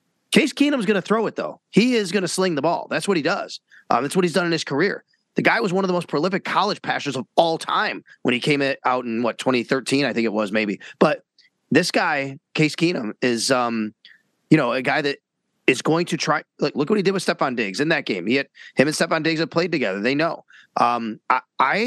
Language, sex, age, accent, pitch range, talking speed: English, male, 30-49, American, 120-170 Hz, 250 wpm